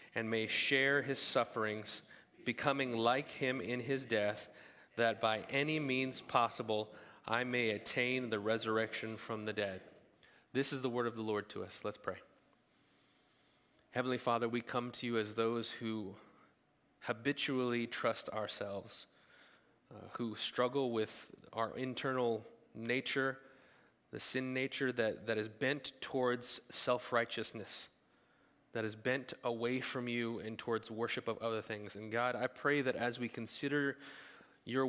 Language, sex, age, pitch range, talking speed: English, male, 30-49, 110-135 Hz, 145 wpm